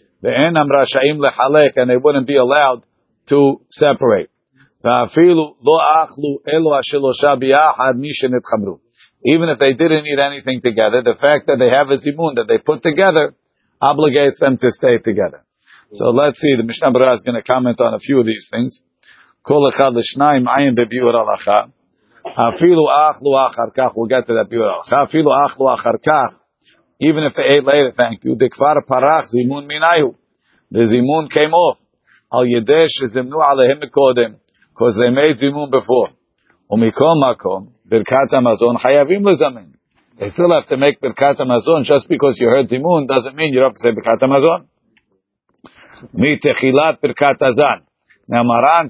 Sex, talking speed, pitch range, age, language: male, 105 wpm, 125-150 Hz, 50-69, English